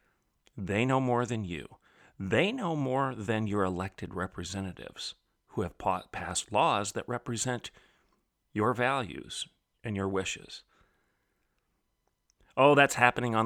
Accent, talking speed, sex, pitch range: American, 120 wpm, male, 95-125 Hz